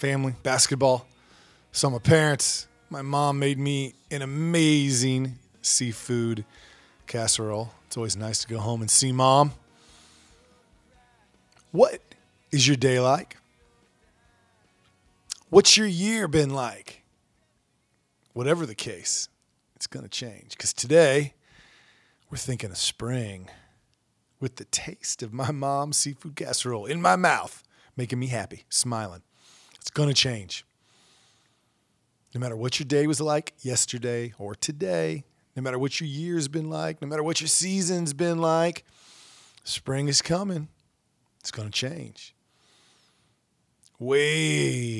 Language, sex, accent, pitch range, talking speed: English, male, American, 110-150 Hz, 130 wpm